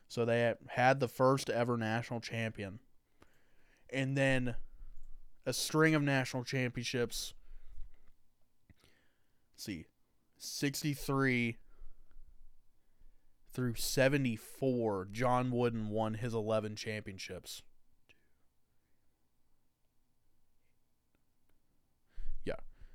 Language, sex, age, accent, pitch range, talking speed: English, male, 20-39, American, 90-125 Hz, 70 wpm